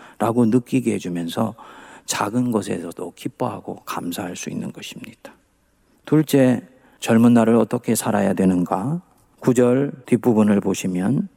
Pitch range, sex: 115-185 Hz, male